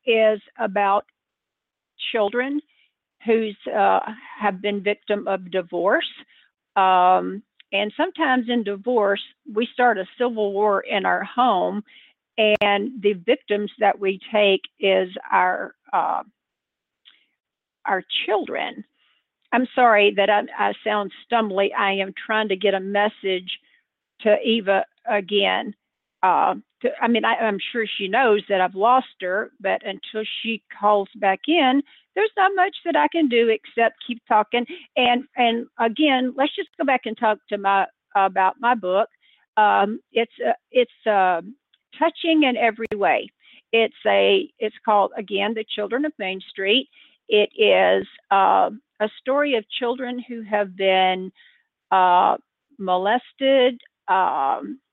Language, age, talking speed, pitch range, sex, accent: English, 50-69, 130 wpm, 200-250 Hz, female, American